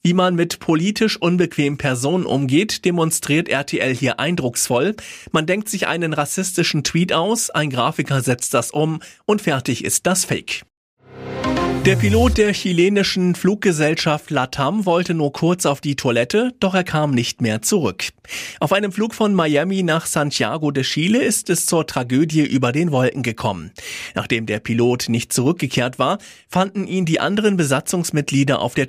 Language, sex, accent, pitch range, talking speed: German, male, German, 125-170 Hz, 160 wpm